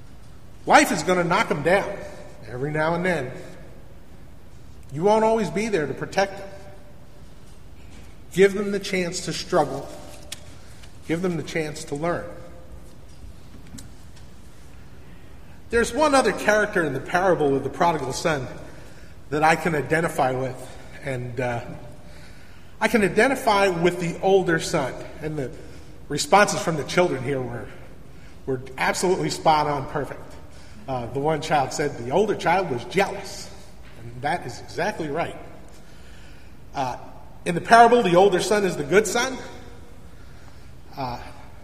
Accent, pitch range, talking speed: American, 130-190 Hz, 140 wpm